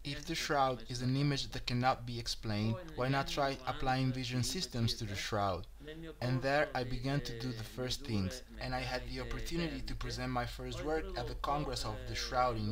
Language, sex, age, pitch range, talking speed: English, male, 20-39, 115-135 Hz, 210 wpm